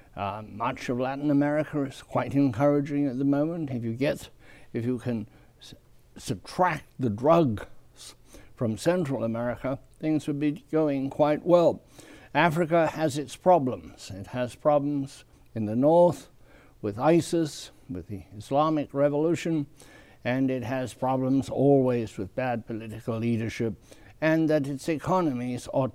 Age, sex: 60-79, male